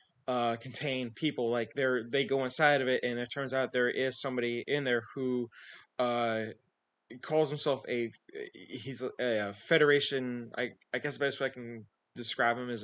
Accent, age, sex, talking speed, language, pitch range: American, 20-39, male, 180 wpm, English, 115-130 Hz